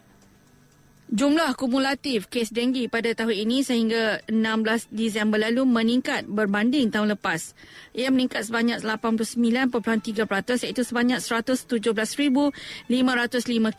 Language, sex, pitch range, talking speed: Malay, female, 215-245 Hz, 95 wpm